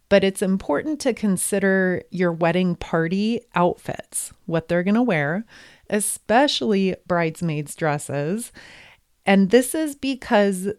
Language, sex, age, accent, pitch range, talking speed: English, female, 30-49, American, 175-225 Hz, 110 wpm